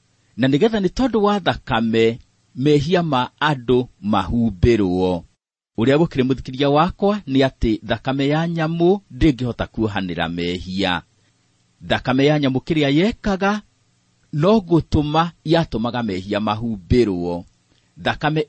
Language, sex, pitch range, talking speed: English, male, 110-165 Hz, 105 wpm